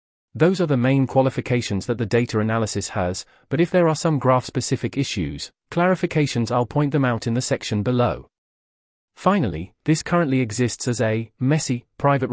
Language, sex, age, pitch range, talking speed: English, male, 30-49, 105-140 Hz, 165 wpm